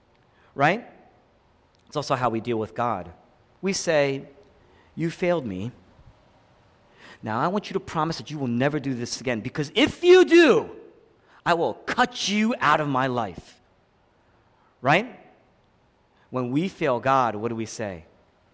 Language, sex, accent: English, male, American